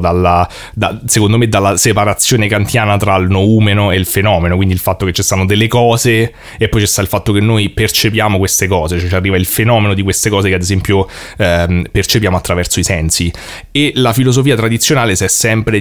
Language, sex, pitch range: Italian, male, 95-115 Hz